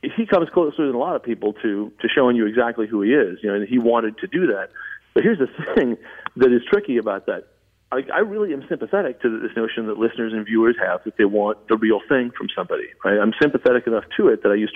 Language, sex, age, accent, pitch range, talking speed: English, male, 40-59, American, 105-130 Hz, 255 wpm